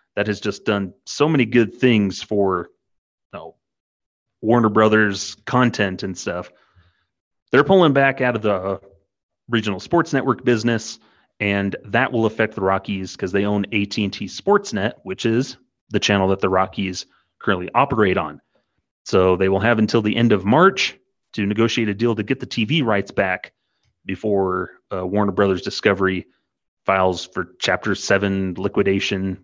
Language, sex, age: English, male, 30-49